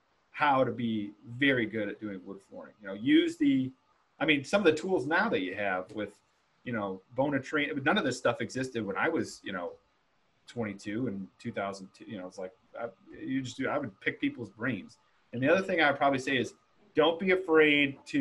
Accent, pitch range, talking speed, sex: American, 115-150 Hz, 220 wpm, male